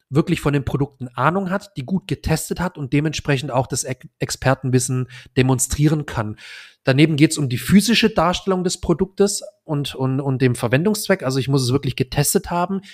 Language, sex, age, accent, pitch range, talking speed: German, male, 30-49, German, 130-170 Hz, 175 wpm